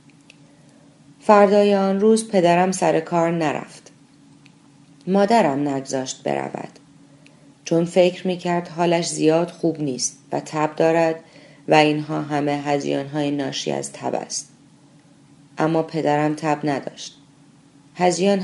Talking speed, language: 105 wpm, Persian